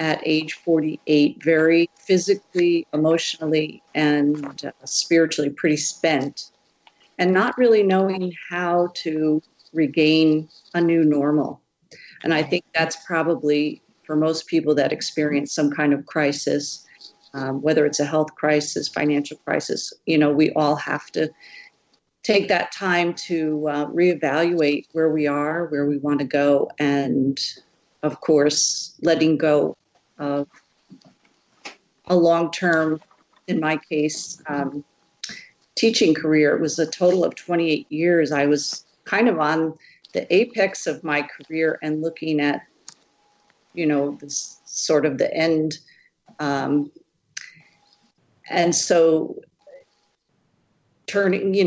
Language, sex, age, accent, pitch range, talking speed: English, female, 50-69, American, 150-170 Hz, 125 wpm